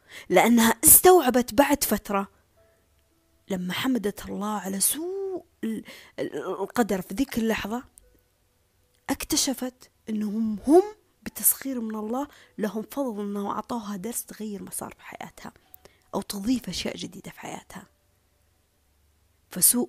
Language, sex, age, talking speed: Arabic, female, 20-39, 110 wpm